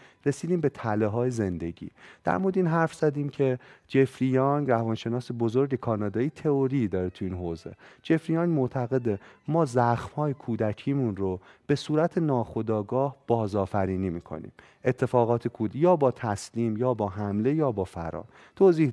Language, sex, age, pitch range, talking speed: Persian, male, 30-49, 110-145 Hz, 140 wpm